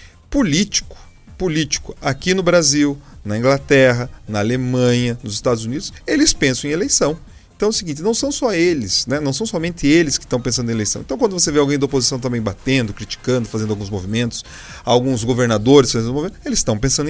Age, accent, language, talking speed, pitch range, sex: 40-59, Brazilian, Portuguese, 190 wpm, 130-200 Hz, male